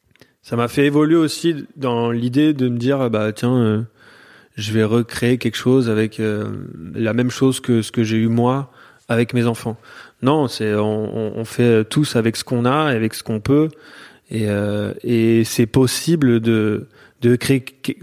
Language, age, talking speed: French, 20-39, 185 wpm